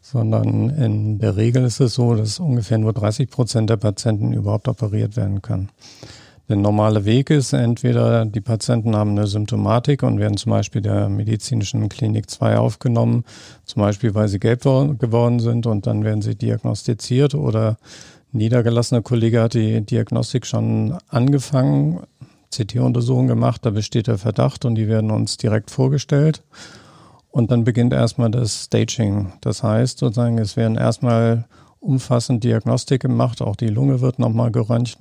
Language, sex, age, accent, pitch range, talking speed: German, male, 50-69, German, 110-125 Hz, 155 wpm